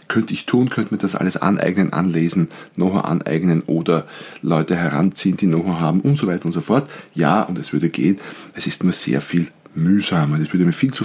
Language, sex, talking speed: German, male, 210 wpm